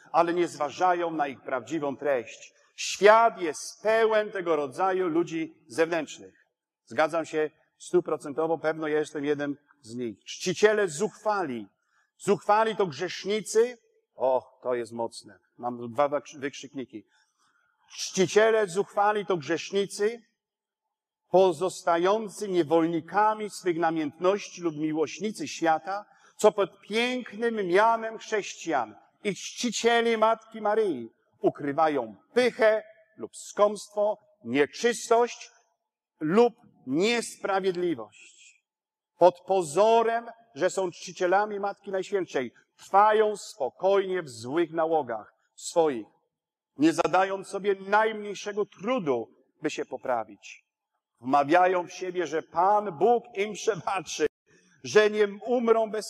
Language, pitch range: Polish, 160-215 Hz